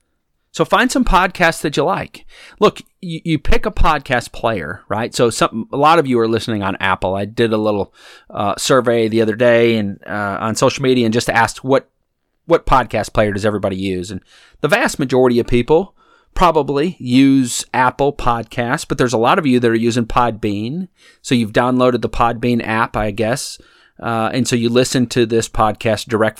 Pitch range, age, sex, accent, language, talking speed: 110-135 Hz, 30-49, male, American, English, 190 wpm